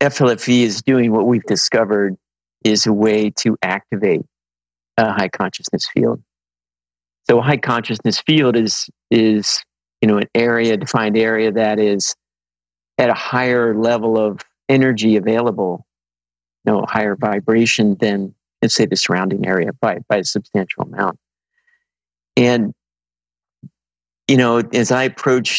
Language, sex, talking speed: English, male, 140 wpm